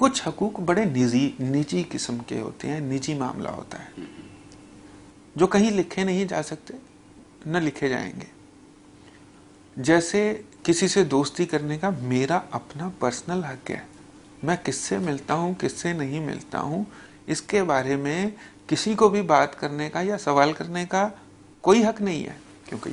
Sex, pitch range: male, 145-205 Hz